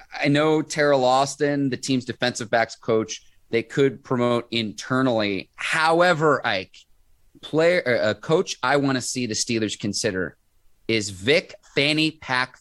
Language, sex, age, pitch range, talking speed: English, male, 30-49, 115-155 Hz, 140 wpm